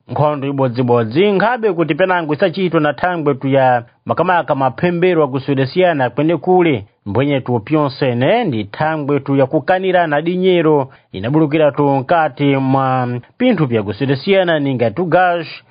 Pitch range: 140-180 Hz